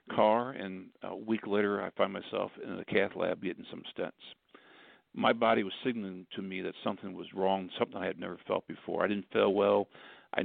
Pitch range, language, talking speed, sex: 100-115 Hz, English, 205 wpm, male